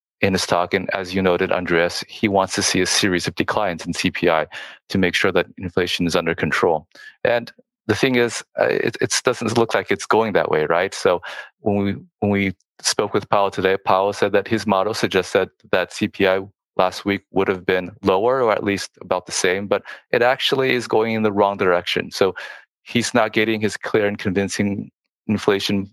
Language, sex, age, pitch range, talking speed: English, male, 20-39, 95-110 Hz, 205 wpm